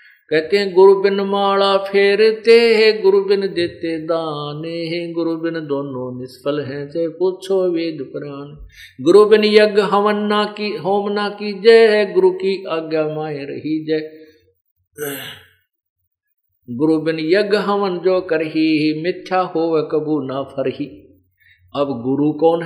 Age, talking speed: 50-69, 80 wpm